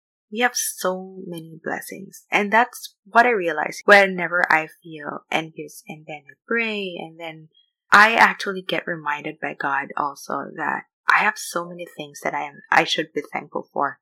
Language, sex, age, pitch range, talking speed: English, female, 20-39, 165-215 Hz, 170 wpm